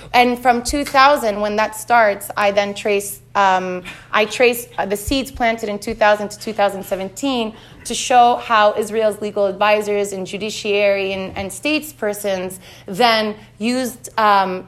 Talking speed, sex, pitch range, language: 135 wpm, female, 195-235 Hz, English